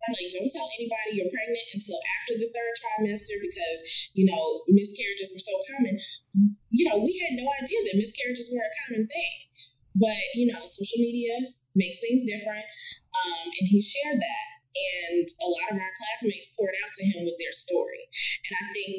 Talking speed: 185 wpm